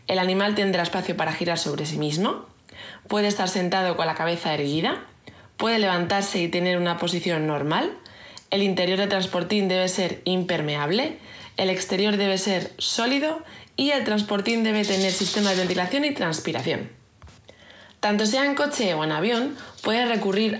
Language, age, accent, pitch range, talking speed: Spanish, 20-39, Spanish, 180-225 Hz, 155 wpm